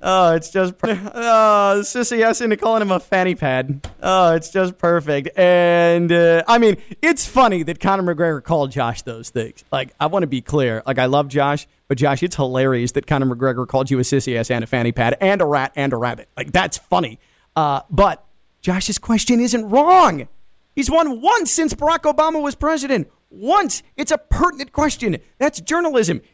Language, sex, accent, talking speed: English, male, American, 195 wpm